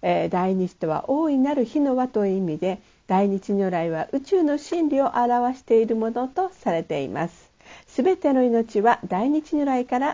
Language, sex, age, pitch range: Japanese, female, 50-69, 195-275 Hz